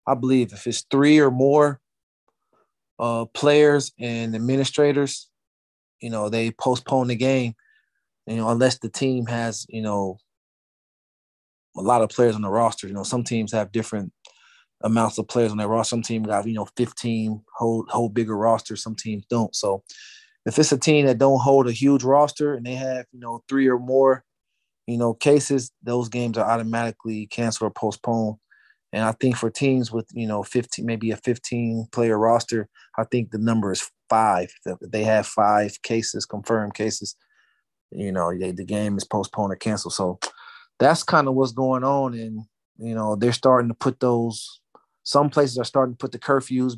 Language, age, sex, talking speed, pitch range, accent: English, 20-39, male, 185 wpm, 110-130 Hz, American